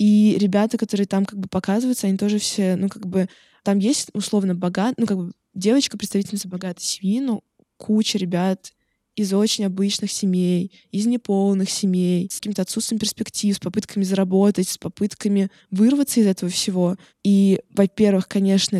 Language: Russian